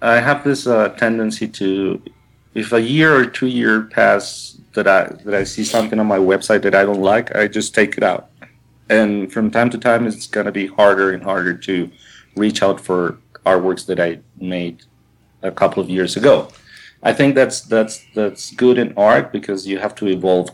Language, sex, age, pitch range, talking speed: English, male, 40-59, 95-115 Hz, 200 wpm